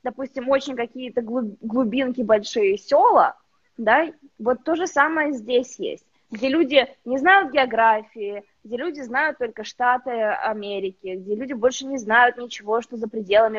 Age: 20-39